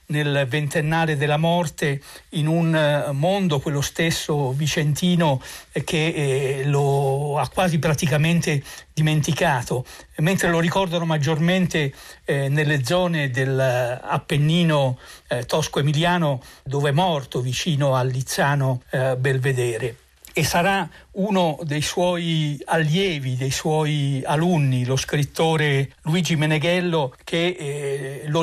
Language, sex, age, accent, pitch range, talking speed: Italian, male, 60-79, native, 145-170 Hz, 100 wpm